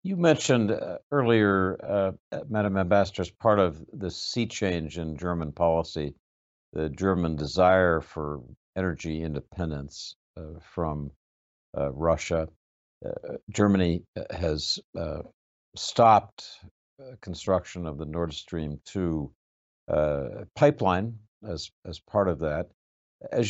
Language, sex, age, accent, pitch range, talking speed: English, male, 60-79, American, 75-105 Hz, 115 wpm